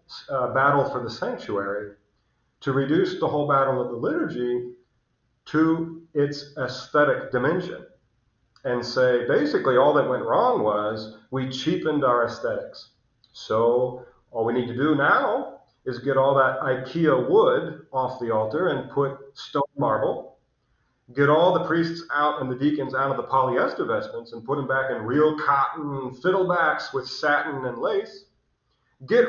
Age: 40-59